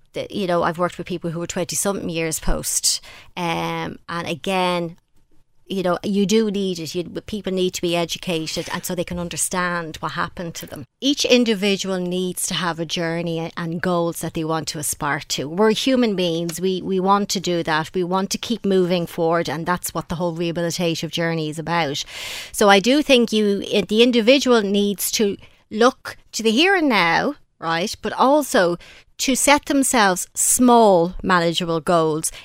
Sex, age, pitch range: female, 30-49, 170-220 Hz